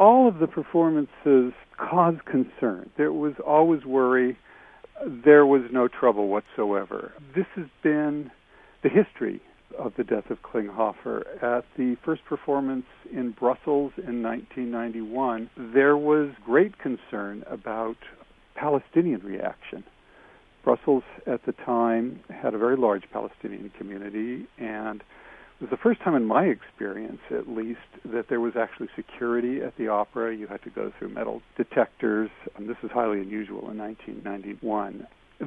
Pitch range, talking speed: 110-140 Hz, 140 wpm